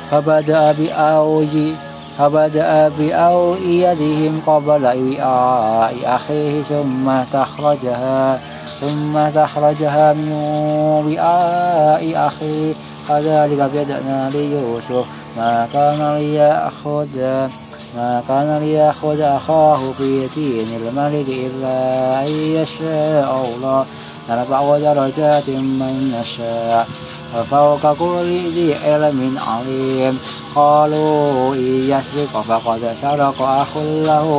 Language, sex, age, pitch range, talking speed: Arabic, male, 20-39, 130-150 Hz, 85 wpm